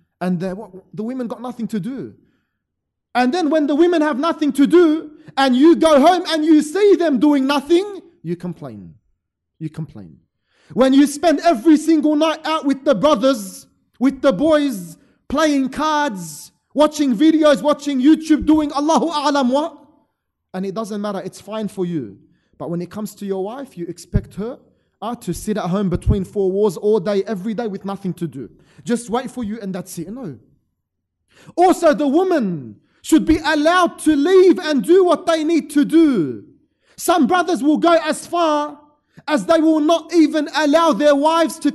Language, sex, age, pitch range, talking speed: English, male, 30-49, 205-315 Hz, 180 wpm